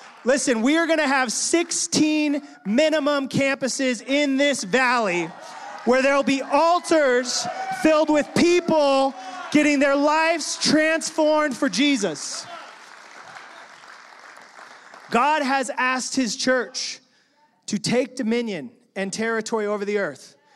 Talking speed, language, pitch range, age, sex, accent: 115 wpm, English, 265-315 Hz, 30-49, male, American